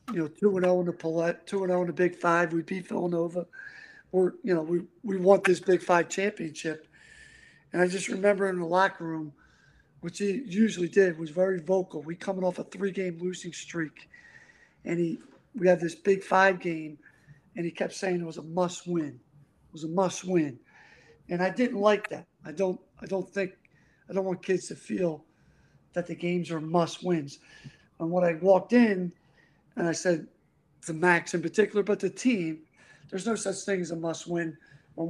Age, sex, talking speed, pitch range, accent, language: 50-69, male, 200 wpm, 165-195 Hz, American, English